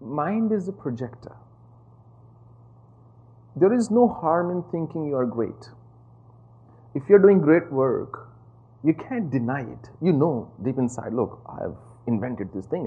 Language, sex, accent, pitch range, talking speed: English, male, Indian, 115-150 Hz, 155 wpm